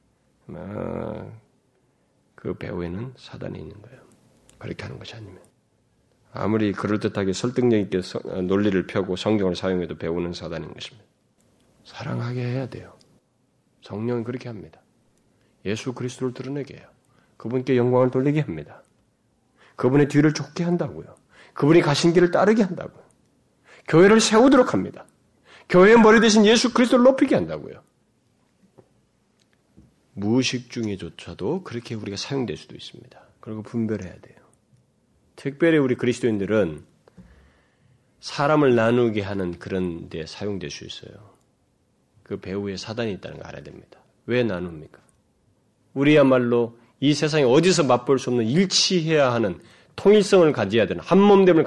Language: Korean